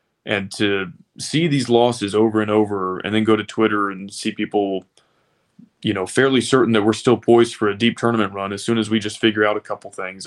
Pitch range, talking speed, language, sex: 100-115 Hz, 230 wpm, English, male